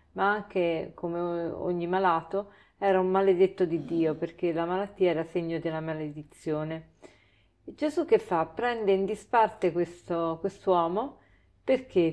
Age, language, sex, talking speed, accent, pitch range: 50-69, Italian, female, 135 wpm, native, 170-205 Hz